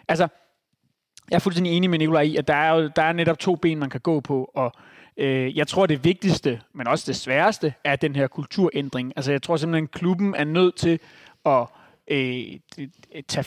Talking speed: 185 wpm